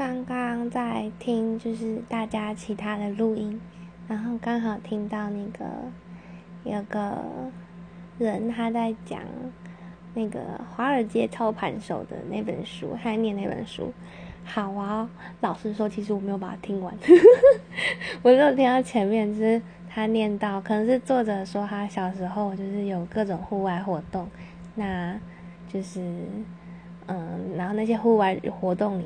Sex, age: female, 10-29